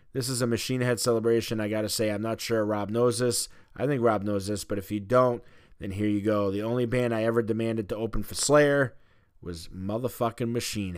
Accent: American